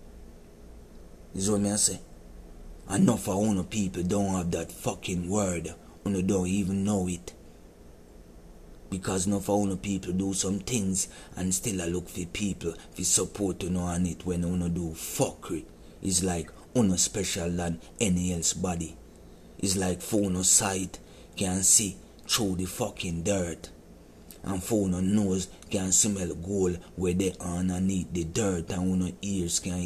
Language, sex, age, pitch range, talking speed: English, male, 30-49, 85-95 Hz, 155 wpm